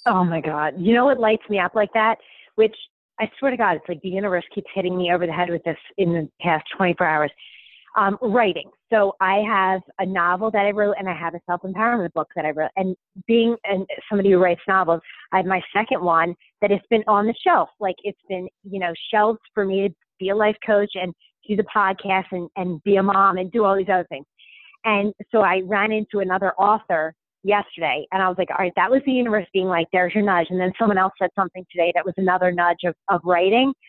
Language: English